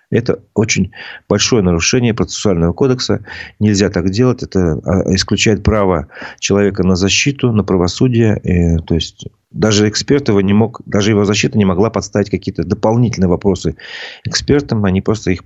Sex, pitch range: male, 90-110 Hz